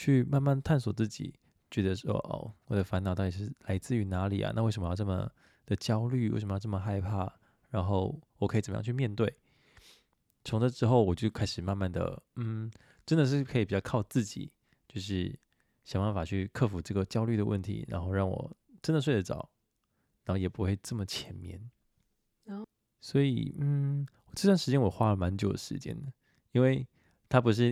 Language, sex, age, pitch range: Chinese, male, 20-39, 95-125 Hz